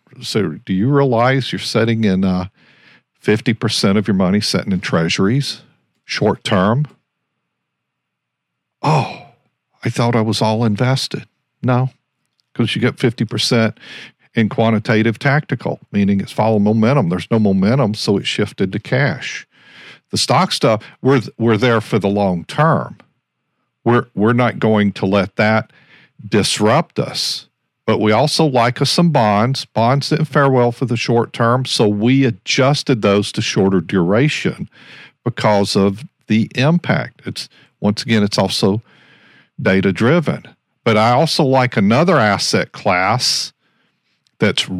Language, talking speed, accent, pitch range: English, 135 wpm, American, 110-140 Hz